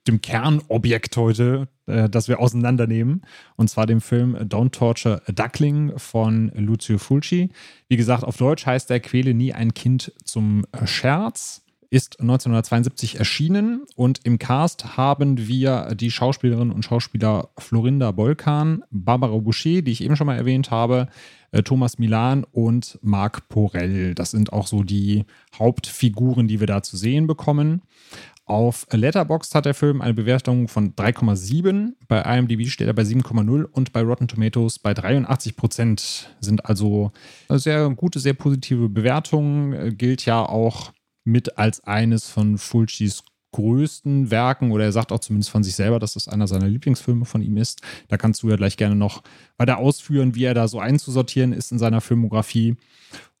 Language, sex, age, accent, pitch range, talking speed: German, male, 30-49, German, 110-130 Hz, 160 wpm